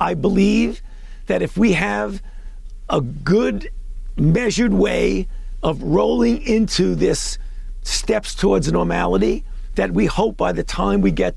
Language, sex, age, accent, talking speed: English, male, 50-69, American, 130 wpm